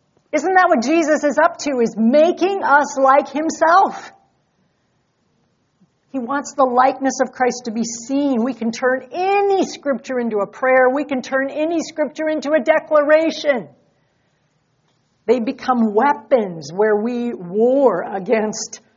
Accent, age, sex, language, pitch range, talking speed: American, 60-79, female, English, 235-320 Hz, 140 wpm